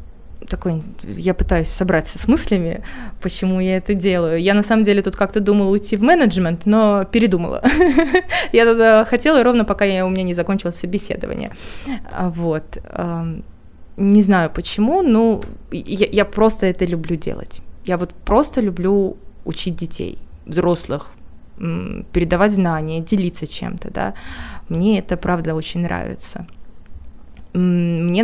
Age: 20-39